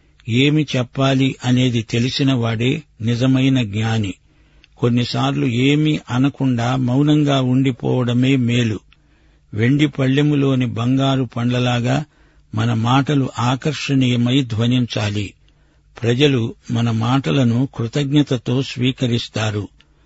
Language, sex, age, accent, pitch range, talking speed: Telugu, male, 60-79, native, 115-135 Hz, 80 wpm